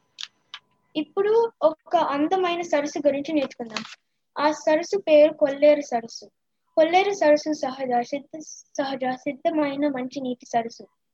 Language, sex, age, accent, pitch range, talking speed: Telugu, female, 20-39, native, 255-310 Hz, 110 wpm